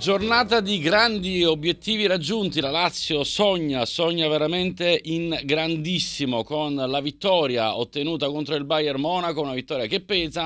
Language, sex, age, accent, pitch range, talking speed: Italian, male, 40-59, native, 115-150 Hz, 140 wpm